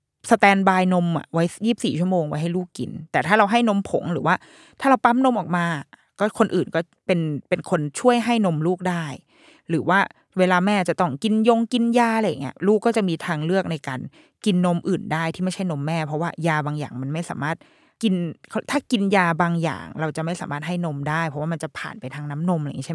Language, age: Thai, 20-39